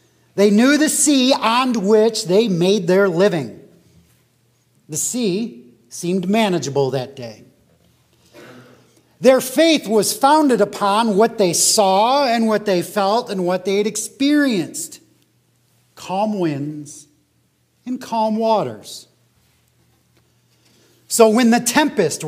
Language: English